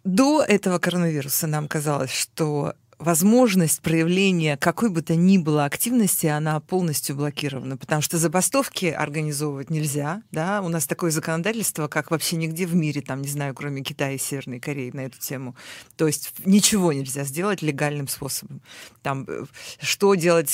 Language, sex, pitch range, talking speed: Russian, female, 145-180 Hz, 155 wpm